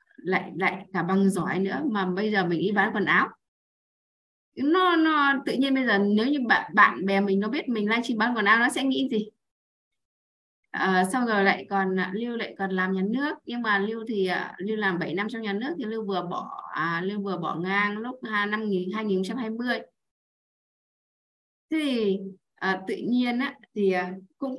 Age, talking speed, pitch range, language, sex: 20-39, 190 wpm, 190-250 Hz, Vietnamese, female